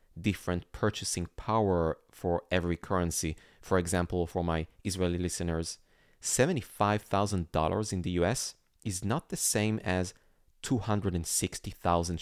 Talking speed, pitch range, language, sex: 110 wpm, 85-105 Hz, English, male